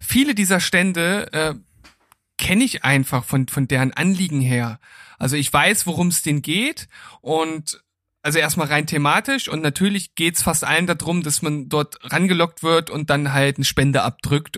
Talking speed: 175 wpm